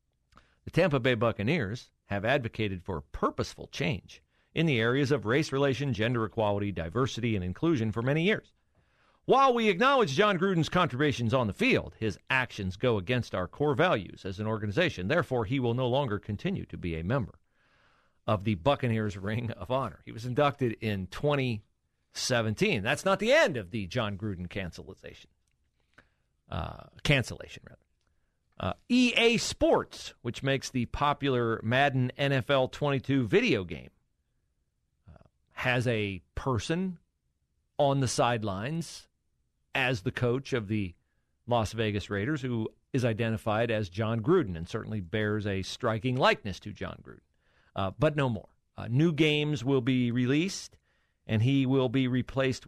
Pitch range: 100-135 Hz